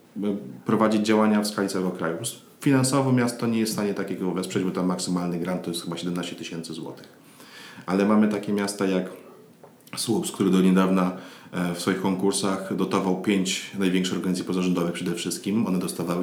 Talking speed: 165 wpm